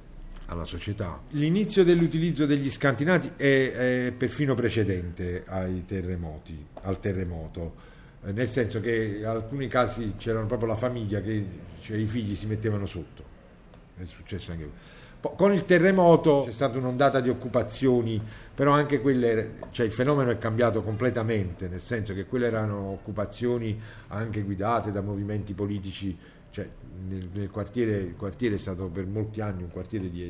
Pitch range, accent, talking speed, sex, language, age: 95-120 Hz, native, 150 wpm, male, Italian, 50-69